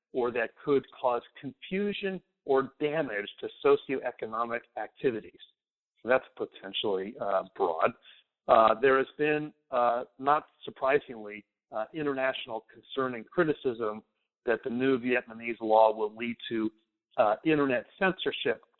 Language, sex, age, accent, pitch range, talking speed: English, male, 50-69, American, 115-150 Hz, 120 wpm